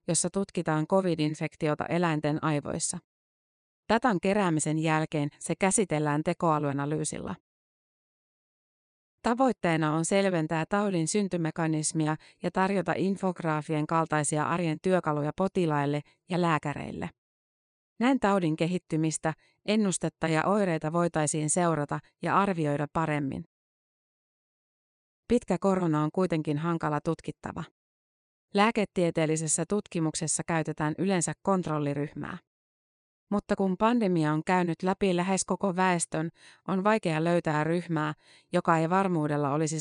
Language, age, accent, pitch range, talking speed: Finnish, 30-49, native, 155-185 Hz, 95 wpm